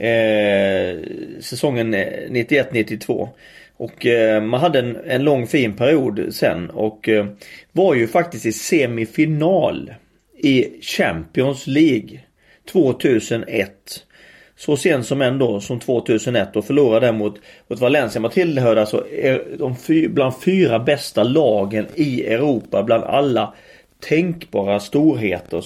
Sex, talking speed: male, 115 wpm